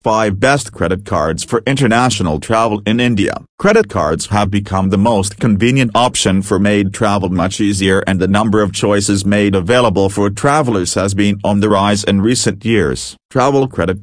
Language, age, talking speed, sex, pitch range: English, 40-59, 175 wpm, male, 95-115 Hz